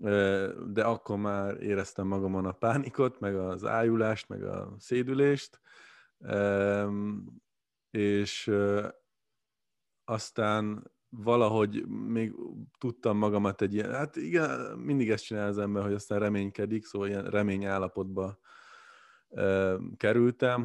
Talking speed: 100 wpm